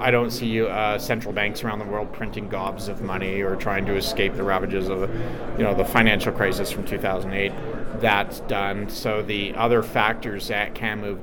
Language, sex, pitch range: English, male, 100-115 Hz